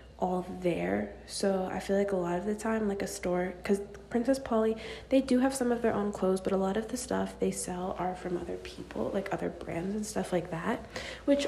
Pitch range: 180-220 Hz